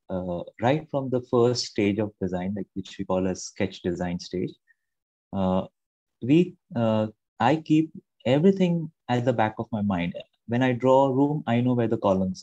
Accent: Indian